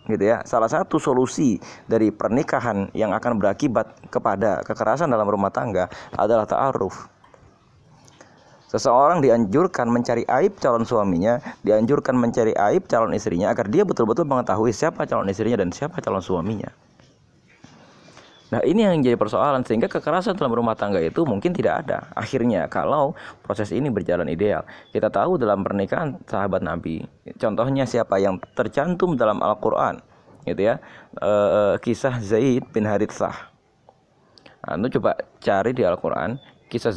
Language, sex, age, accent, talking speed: Indonesian, male, 30-49, native, 135 wpm